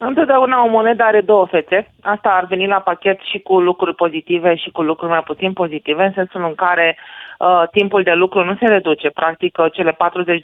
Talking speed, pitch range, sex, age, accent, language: 195 wpm, 165-200 Hz, female, 30-49, native, Romanian